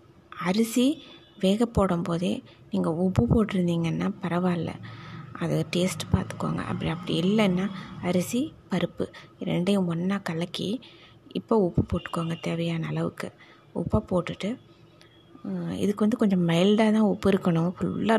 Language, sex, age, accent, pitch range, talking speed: Tamil, female, 20-39, native, 175-205 Hz, 110 wpm